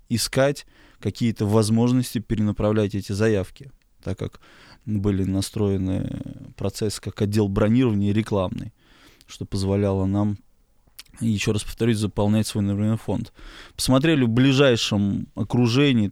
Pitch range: 105-125 Hz